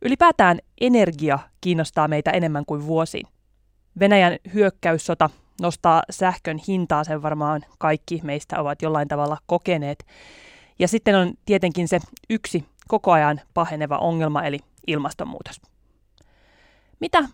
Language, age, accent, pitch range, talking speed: Finnish, 30-49, native, 155-205 Hz, 115 wpm